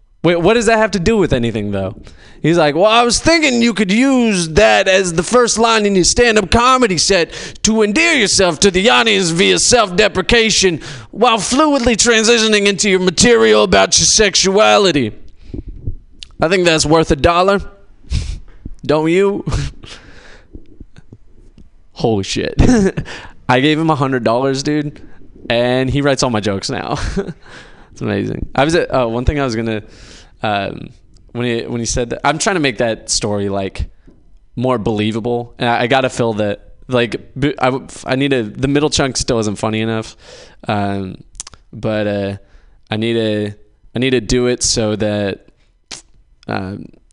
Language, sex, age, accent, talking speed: English, male, 20-39, American, 160 wpm